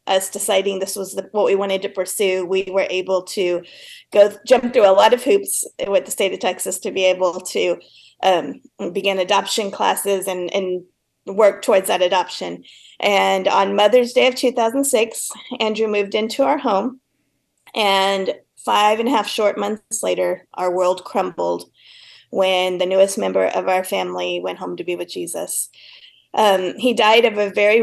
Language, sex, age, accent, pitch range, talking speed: English, female, 30-49, American, 190-230 Hz, 175 wpm